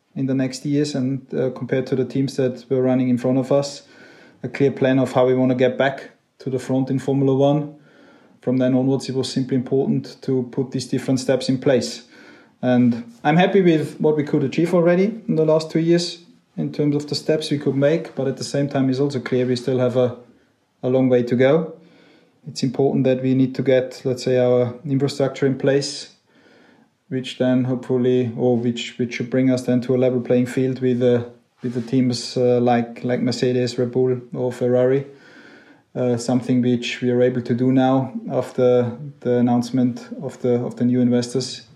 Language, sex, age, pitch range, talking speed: English, male, 20-39, 125-135 Hz, 210 wpm